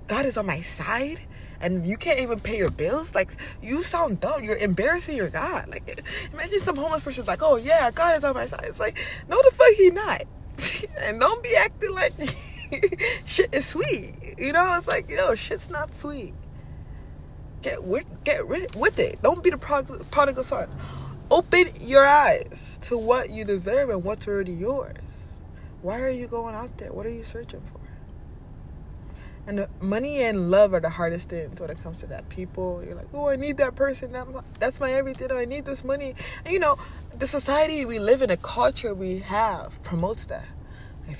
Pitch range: 190-295 Hz